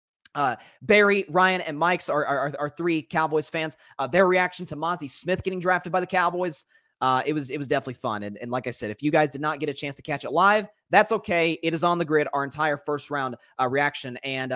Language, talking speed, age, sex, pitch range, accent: English, 245 wpm, 30-49, male, 130-180 Hz, American